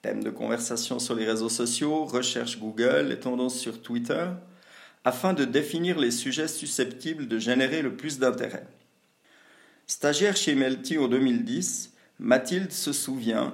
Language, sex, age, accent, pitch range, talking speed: French, male, 50-69, French, 125-180 Hz, 140 wpm